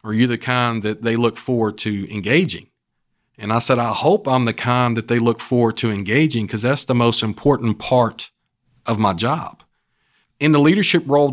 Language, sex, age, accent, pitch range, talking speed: English, male, 40-59, American, 110-140 Hz, 195 wpm